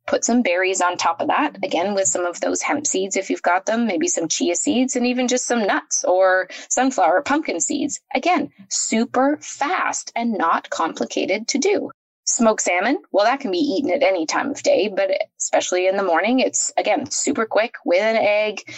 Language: English